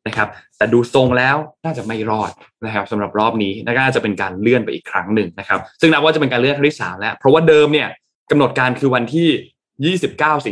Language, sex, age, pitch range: Thai, male, 20-39, 110-155 Hz